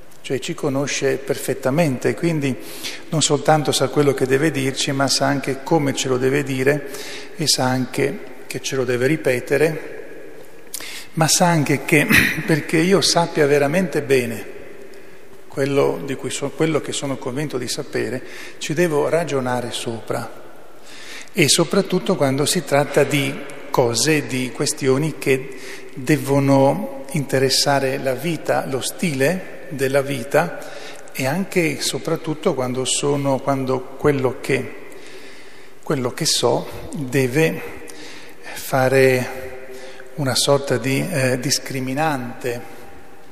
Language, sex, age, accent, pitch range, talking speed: Italian, male, 40-59, native, 130-150 Hz, 120 wpm